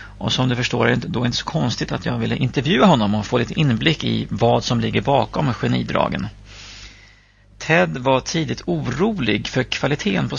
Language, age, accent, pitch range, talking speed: English, 30-49, Swedish, 100-140 Hz, 185 wpm